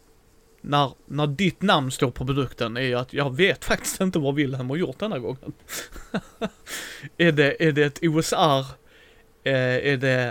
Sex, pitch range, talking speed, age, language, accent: male, 125-150 Hz, 175 wpm, 30-49, Swedish, native